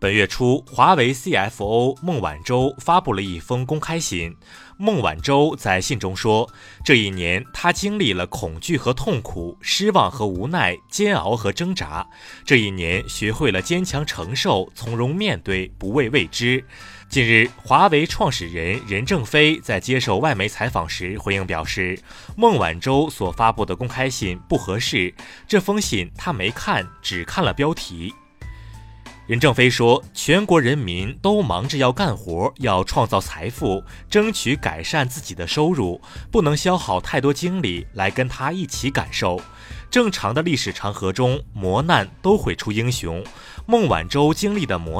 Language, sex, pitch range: Chinese, male, 95-150 Hz